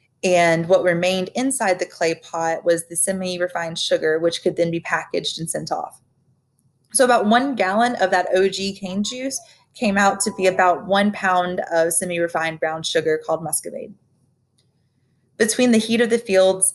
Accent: American